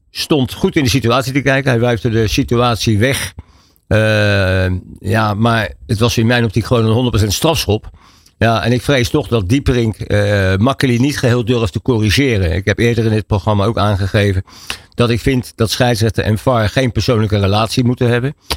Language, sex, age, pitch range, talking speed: Dutch, male, 50-69, 100-120 Hz, 185 wpm